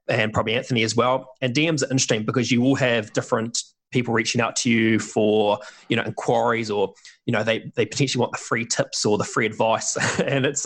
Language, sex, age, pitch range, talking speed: English, male, 20-39, 115-135 Hz, 220 wpm